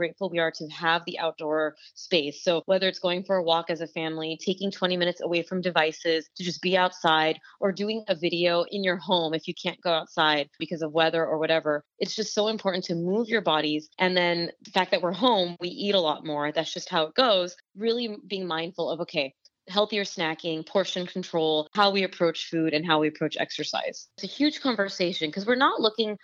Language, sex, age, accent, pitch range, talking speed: English, female, 20-39, American, 160-190 Hz, 220 wpm